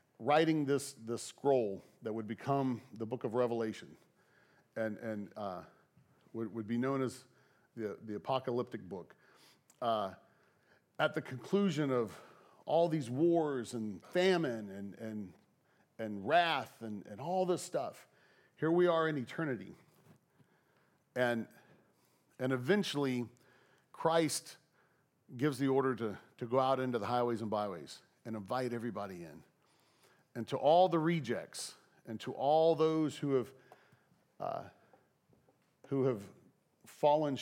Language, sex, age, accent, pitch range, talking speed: English, male, 40-59, American, 115-165 Hz, 130 wpm